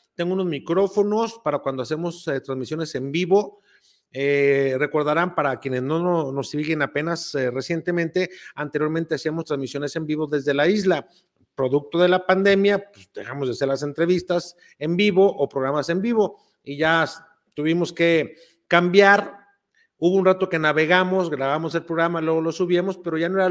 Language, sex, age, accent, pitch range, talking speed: Spanish, male, 50-69, Mexican, 140-180 Hz, 165 wpm